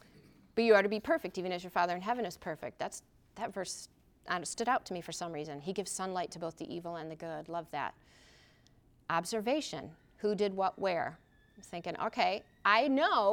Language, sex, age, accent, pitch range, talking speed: English, female, 40-59, American, 175-215 Hz, 205 wpm